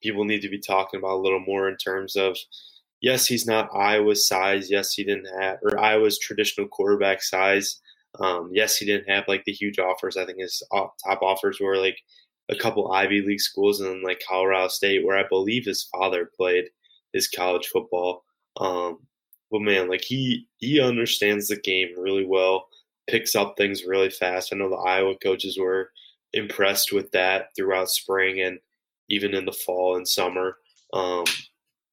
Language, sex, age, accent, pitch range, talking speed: English, male, 20-39, American, 95-110 Hz, 180 wpm